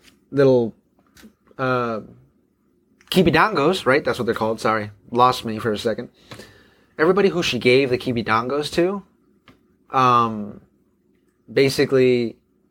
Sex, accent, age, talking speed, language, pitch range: male, American, 30-49, 110 wpm, English, 120-140 Hz